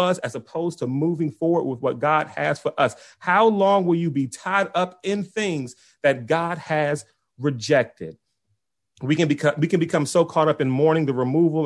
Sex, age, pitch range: male, 30-49, 130-160 Hz